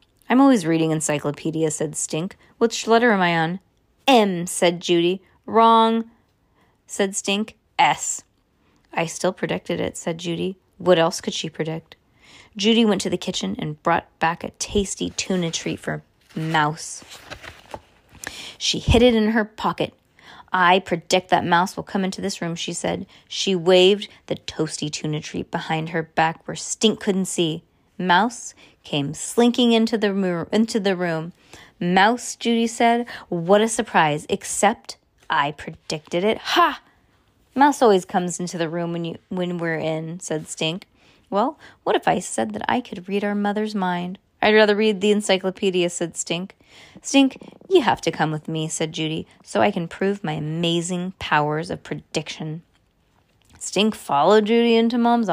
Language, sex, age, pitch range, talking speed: English, female, 20-39, 165-220 Hz, 160 wpm